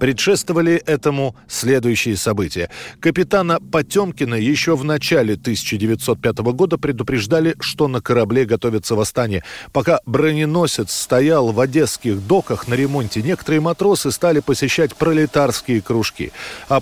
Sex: male